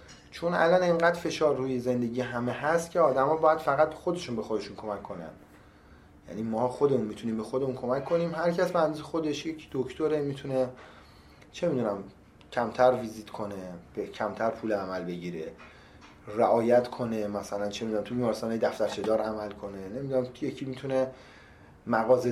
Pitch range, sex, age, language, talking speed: 110-150 Hz, male, 30-49, English, 155 wpm